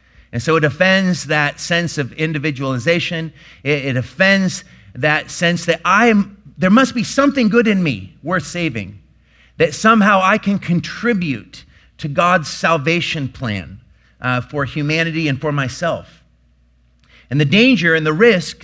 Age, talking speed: 40-59, 150 wpm